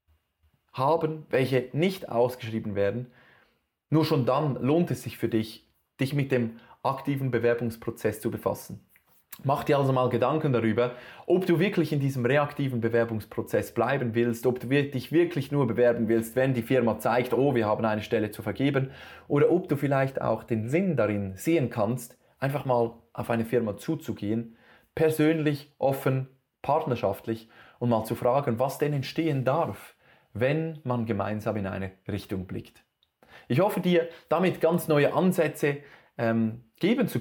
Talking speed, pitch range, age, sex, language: 155 wpm, 115-145 Hz, 20-39, male, German